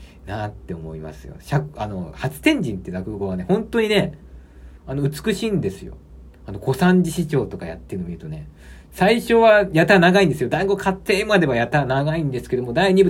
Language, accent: Japanese, native